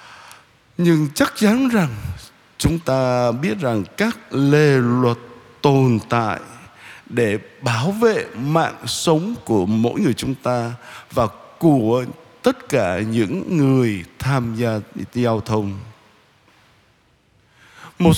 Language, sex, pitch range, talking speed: Vietnamese, male, 125-195 Hz, 110 wpm